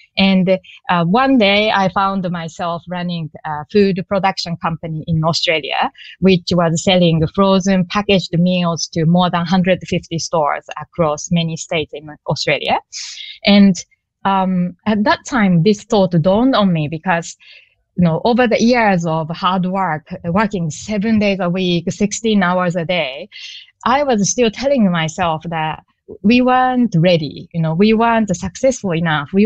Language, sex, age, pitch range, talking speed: English, female, 20-39, 170-215 Hz, 150 wpm